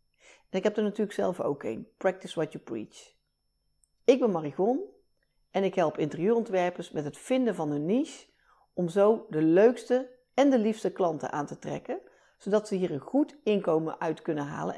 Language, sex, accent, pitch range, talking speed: Dutch, female, Dutch, 170-230 Hz, 185 wpm